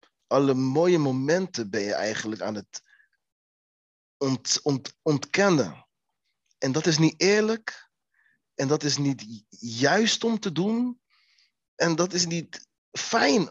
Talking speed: 120 wpm